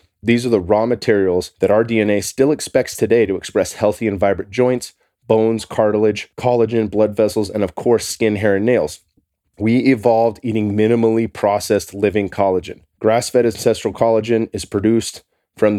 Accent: American